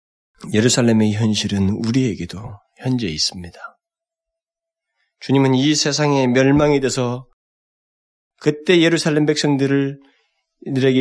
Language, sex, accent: Korean, male, native